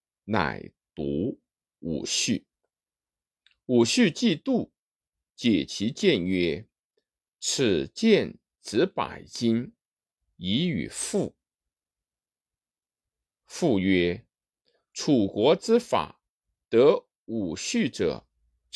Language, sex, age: Chinese, male, 50-69